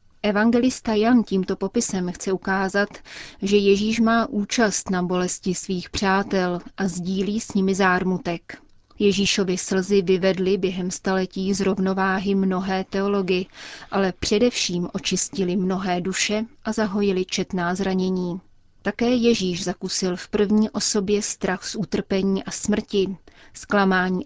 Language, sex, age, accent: Czech, female, 30-49, native